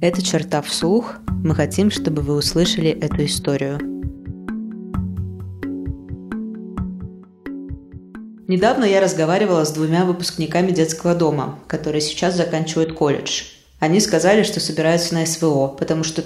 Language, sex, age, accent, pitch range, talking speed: Russian, female, 20-39, native, 155-185 Hz, 110 wpm